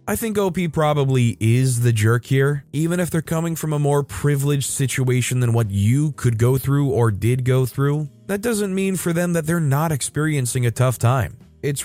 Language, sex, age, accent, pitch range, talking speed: English, male, 20-39, American, 110-145 Hz, 205 wpm